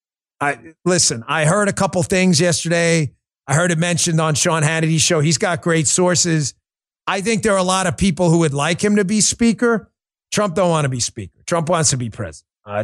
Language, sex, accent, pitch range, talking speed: English, male, American, 155-220 Hz, 220 wpm